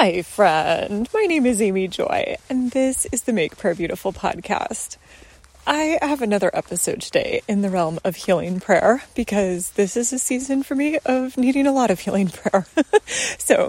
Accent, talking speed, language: American, 180 wpm, English